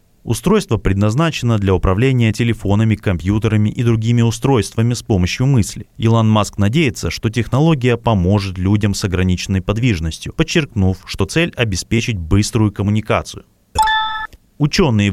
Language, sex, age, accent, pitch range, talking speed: Russian, male, 30-49, native, 95-125 Hz, 115 wpm